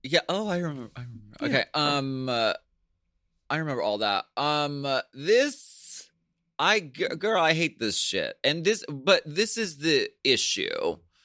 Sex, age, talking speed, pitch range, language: male, 30-49, 160 wpm, 110-160 Hz, English